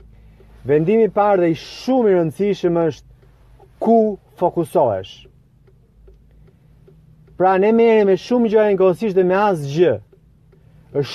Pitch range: 155-220 Hz